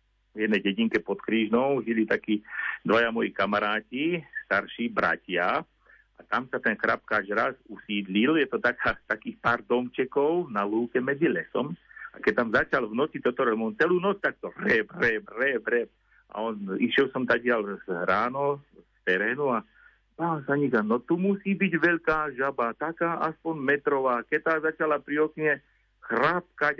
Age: 50-69